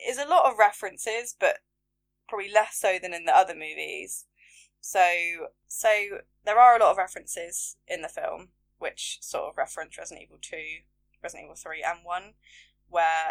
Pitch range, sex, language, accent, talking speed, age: 170-230 Hz, female, English, British, 170 wpm, 10-29